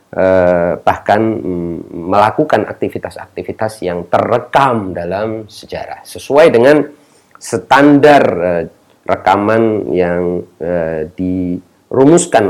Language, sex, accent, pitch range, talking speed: Indonesian, male, native, 95-145 Hz, 80 wpm